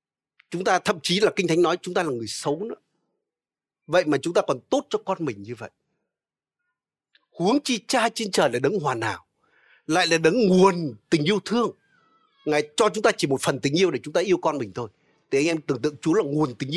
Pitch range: 150-220 Hz